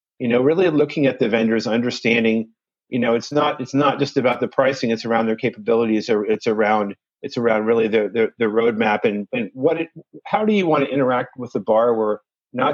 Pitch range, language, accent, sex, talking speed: 115-140 Hz, English, American, male, 215 wpm